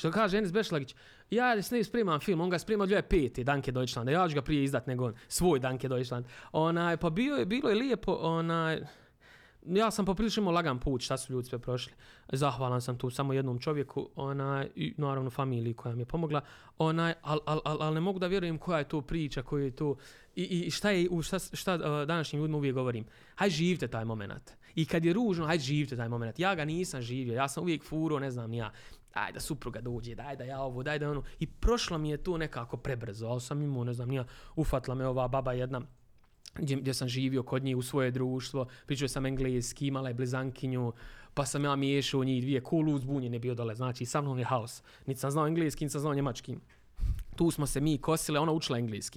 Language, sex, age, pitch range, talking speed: Croatian, male, 20-39, 125-160 Hz, 210 wpm